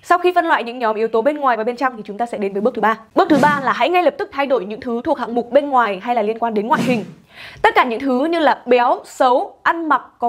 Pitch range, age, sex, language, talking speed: 225-300 Hz, 20-39, female, Vietnamese, 330 wpm